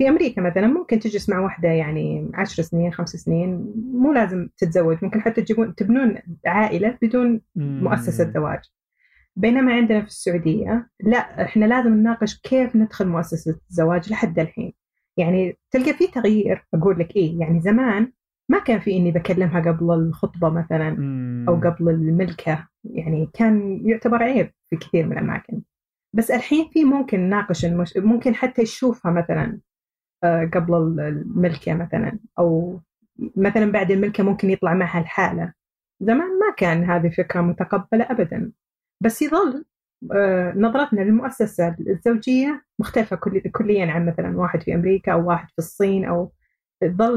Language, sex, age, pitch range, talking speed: Arabic, female, 30-49, 175-230 Hz, 140 wpm